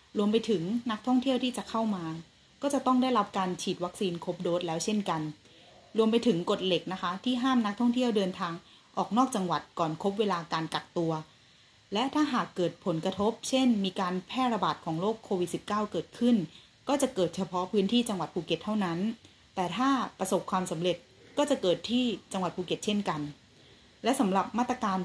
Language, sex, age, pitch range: Thai, female, 30-49, 175-225 Hz